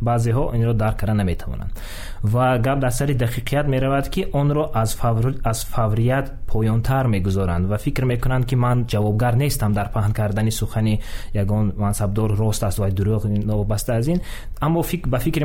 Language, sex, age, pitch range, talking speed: Russian, male, 20-39, 105-130 Hz, 185 wpm